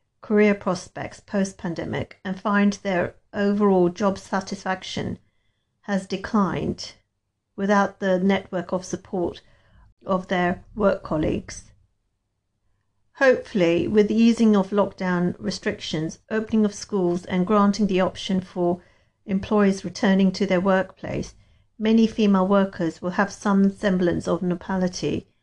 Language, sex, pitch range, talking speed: English, female, 170-205 Hz, 115 wpm